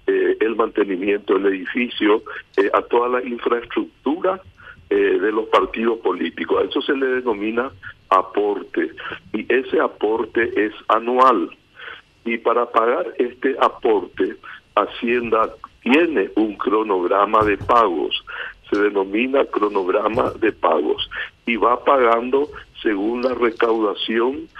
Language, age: Spanish, 60-79